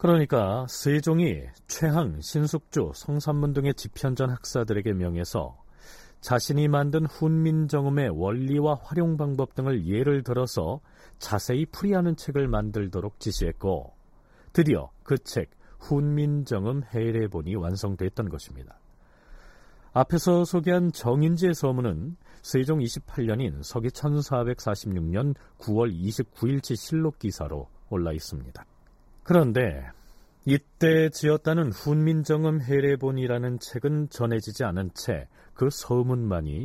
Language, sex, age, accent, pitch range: Korean, male, 40-59, native, 105-150 Hz